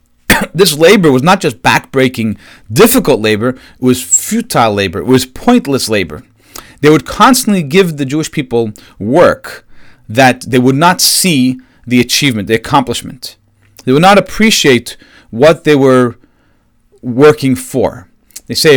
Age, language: 40-59, English